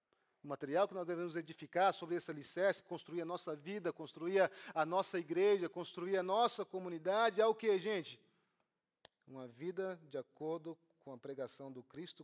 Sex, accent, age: male, Brazilian, 40-59